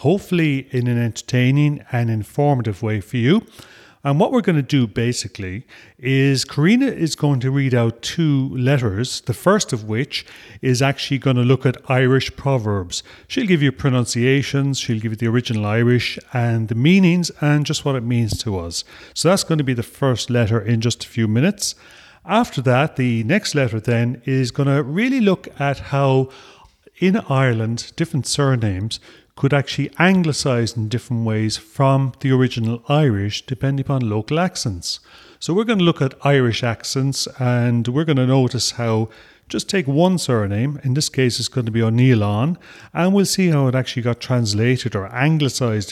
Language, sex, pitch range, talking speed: English, male, 115-145 Hz, 180 wpm